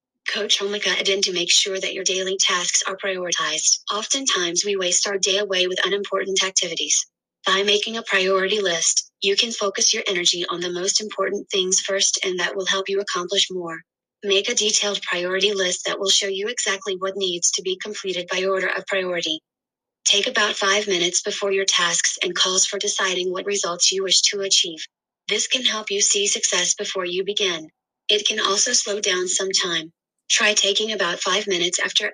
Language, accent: English, American